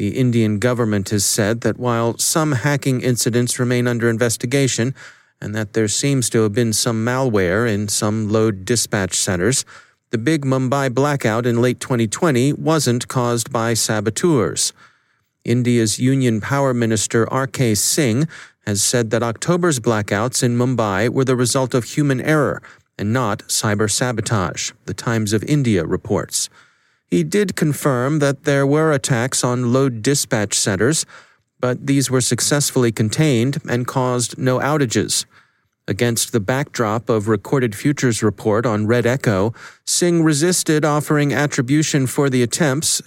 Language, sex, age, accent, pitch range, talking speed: English, male, 40-59, American, 115-140 Hz, 140 wpm